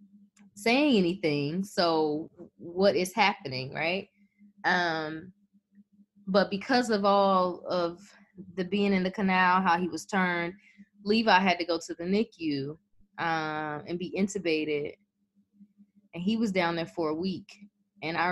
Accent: American